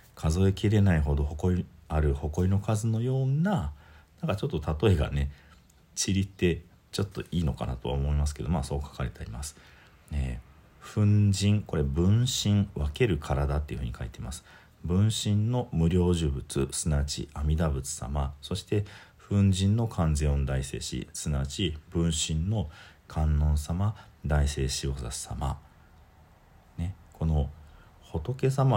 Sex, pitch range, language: male, 75-95 Hz, Japanese